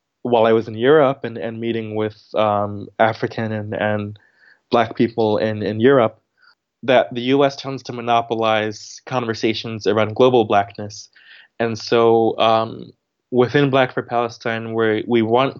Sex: male